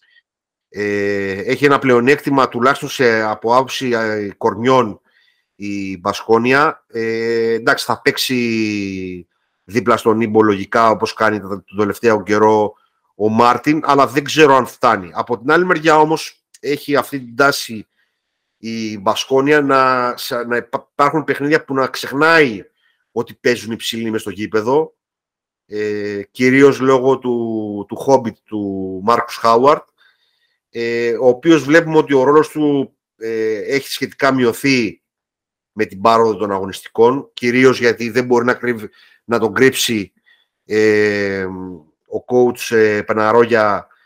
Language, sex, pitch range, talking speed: Greek, male, 110-140 Hz, 130 wpm